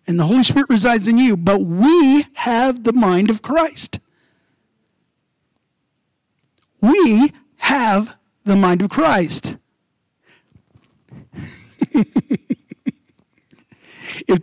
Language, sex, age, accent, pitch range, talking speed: English, male, 50-69, American, 195-295 Hz, 85 wpm